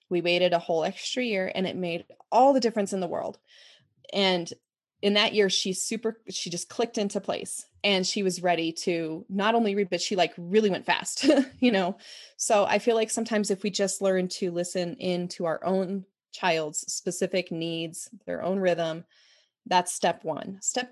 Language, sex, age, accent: English, female, 20-39, American